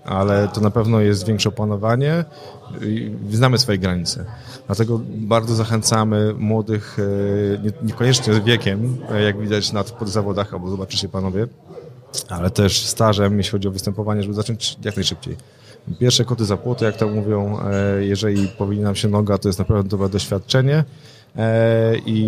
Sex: male